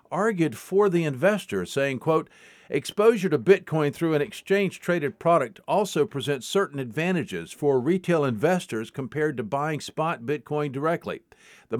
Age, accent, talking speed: 50-69, American, 135 wpm